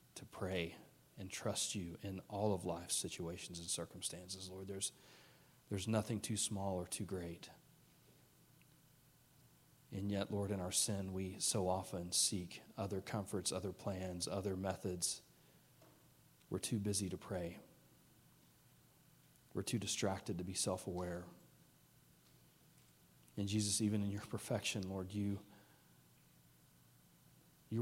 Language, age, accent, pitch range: English, 40-59, American, 95-105 Hz